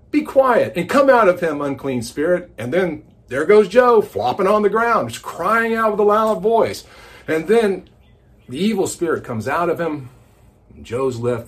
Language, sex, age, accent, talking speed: English, male, 50-69, American, 195 wpm